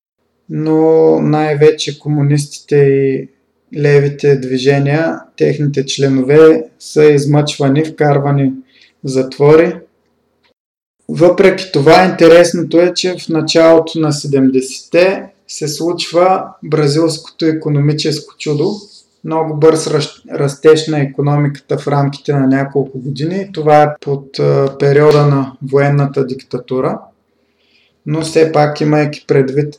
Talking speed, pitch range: 95 wpm, 135-160 Hz